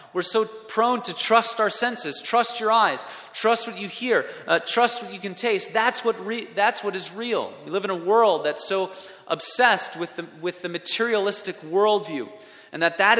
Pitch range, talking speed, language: 130-195 Hz, 200 wpm, English